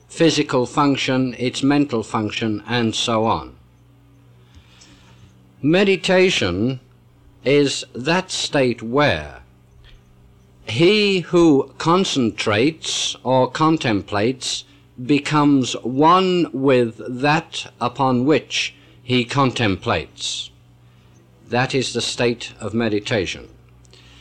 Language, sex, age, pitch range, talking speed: English, male, 50-69, 110-145 Hz, 80 wpm